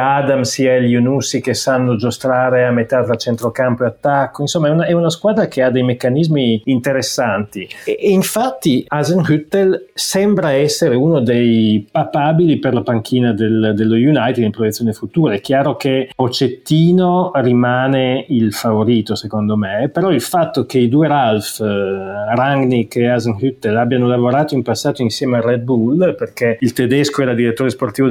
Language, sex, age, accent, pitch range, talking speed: Italian, male, 30-49, native, 115-140 Hz, 160 wpm